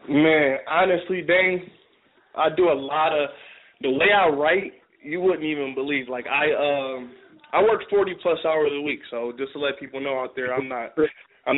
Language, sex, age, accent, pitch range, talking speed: English, male, 20-39, American, 135-175 Hz, 190 wpm